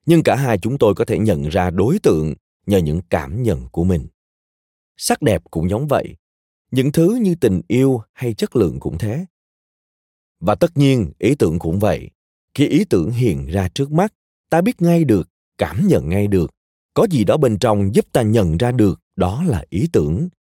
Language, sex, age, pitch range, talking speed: Vietnamese, male, 20-39, 85-125 Hz, 200 wpm